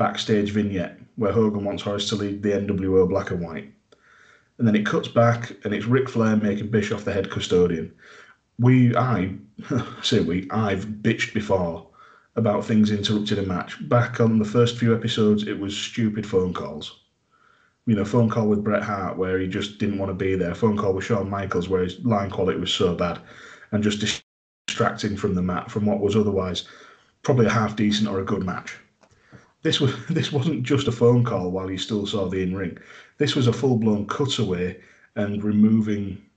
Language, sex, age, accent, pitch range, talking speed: English, male, 30-49, British, 100-120 Hz, 200 wpm